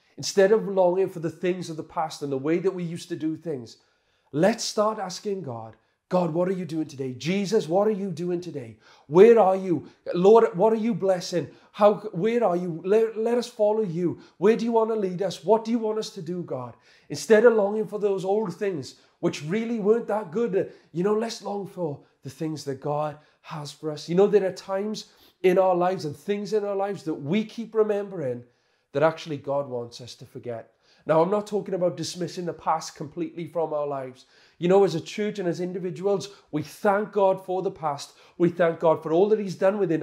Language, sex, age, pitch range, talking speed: English, male, 30-49, 150-195 Hz, 225 wpm